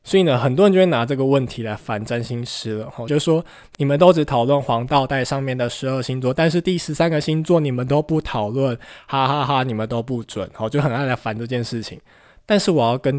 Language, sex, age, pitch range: Chinese, male, 20-39, 120-165 Hz